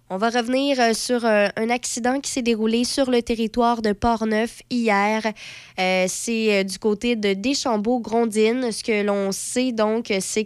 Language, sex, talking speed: French, female, 155 wpm